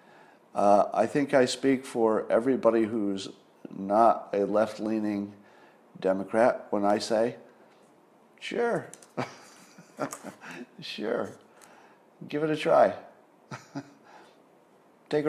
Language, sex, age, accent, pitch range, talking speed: English, male, 50-69, American, 105-150 Hz, 85 wpm